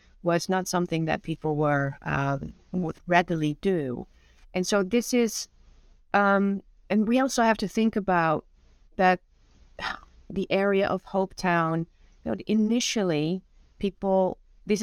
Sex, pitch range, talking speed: female, 160-195 Hz, 130 wpm